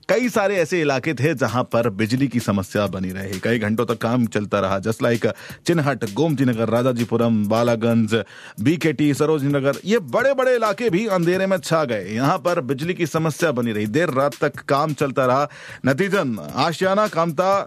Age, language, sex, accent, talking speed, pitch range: 40-59, Hindi, male, native, 180 wpm, 125-190 Hz